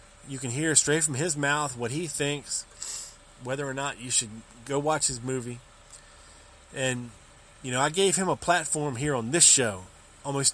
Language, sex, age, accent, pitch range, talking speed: English, male, 20-39, American, 115-155 Hz, 180 wpm